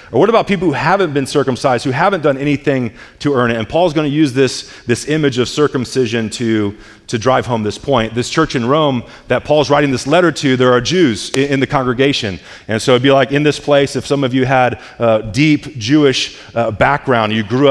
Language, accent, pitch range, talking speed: English, American, 120-150 Hz, 235 wpm